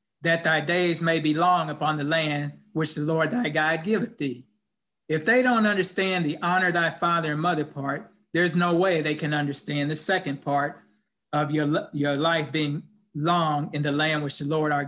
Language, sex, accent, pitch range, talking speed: English, male, American, 150-195 Hz, 200 wpm